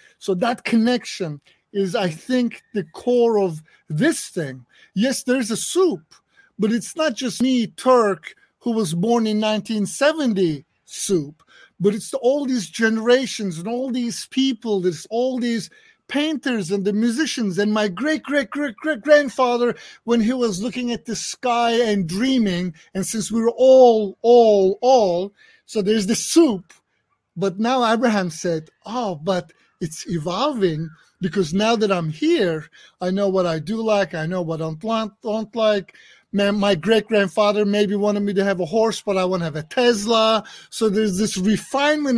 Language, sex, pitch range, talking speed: English, male, 195-245 Hz, 160 wpm